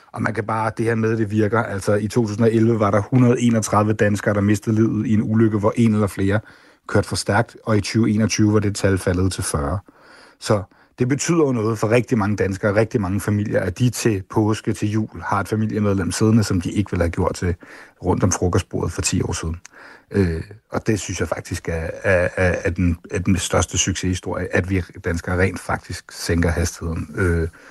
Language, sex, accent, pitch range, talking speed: Danish, male, native, 95-110 Hz, 210 wpm